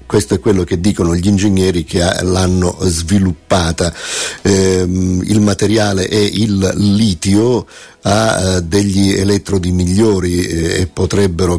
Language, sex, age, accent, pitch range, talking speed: Italian, male, 50-69, native, 90-100 Hz, 110 wpm